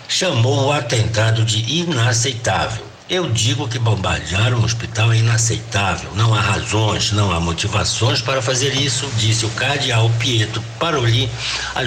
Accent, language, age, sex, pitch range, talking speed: Brazilian, Portuguese, 60-79, male, 105-120 Hz, 140 wpm